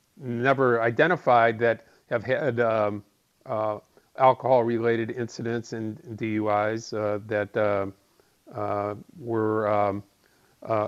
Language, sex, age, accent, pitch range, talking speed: English, male, 50-69, American, 110-130 Hz, 100 wpm